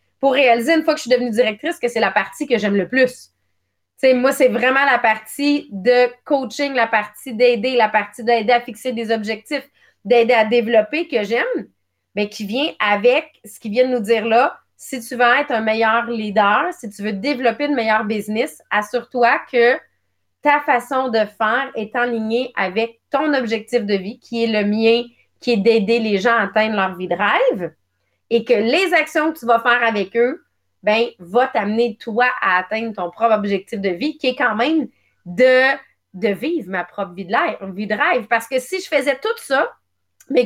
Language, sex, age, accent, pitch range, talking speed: English, female, 30-49, Canadian, 210-255 Hz, 205 wpm